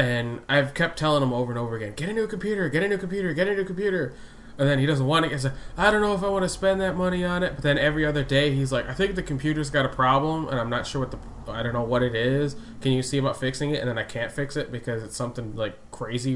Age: 20-39